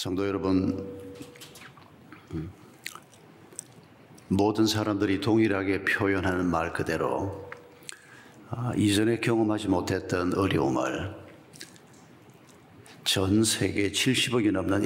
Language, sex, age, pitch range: Korean, male, 50-69, 95-115 Hz